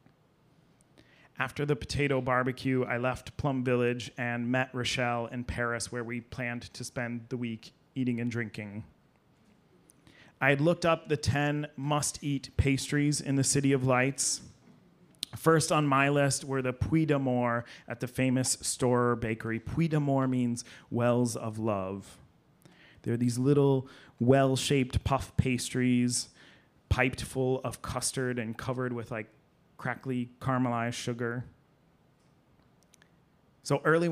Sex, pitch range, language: male, 120-135 Hz, English